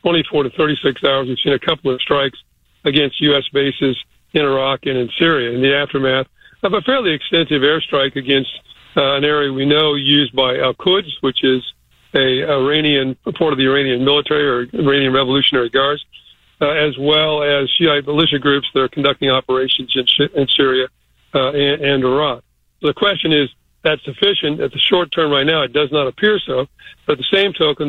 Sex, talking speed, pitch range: male, 190 wpm, 135-155 Hz